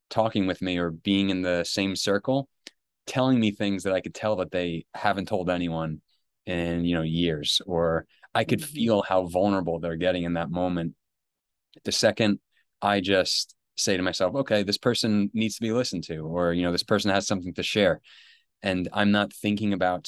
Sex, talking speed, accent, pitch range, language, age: male, 195 wpm, American, 90-105 Hz, English, 20-39